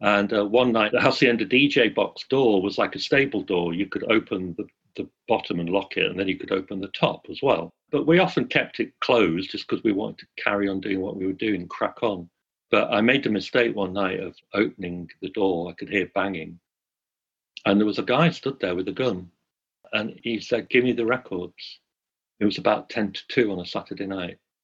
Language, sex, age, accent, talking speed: English, male, 50-69, British, 230 wpm